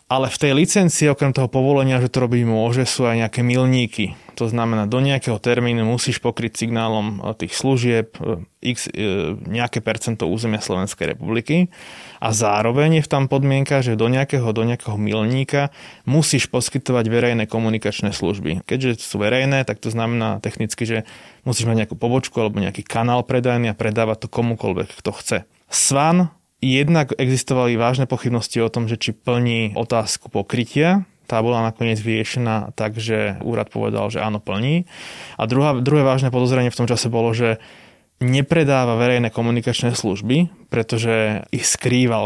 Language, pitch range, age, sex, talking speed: Slovak, 110-130 Hz, 20-39, male, 155 wpm